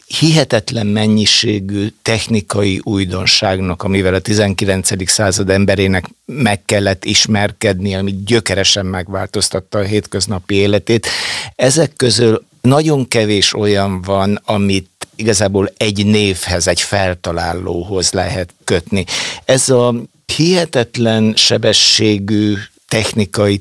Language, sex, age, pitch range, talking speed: Hungarian, male, 60-79, 100-115 Hz, 95 wpm